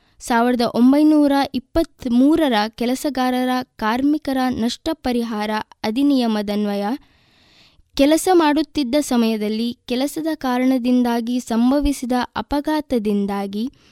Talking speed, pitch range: 65 wpm, 230-295 Hz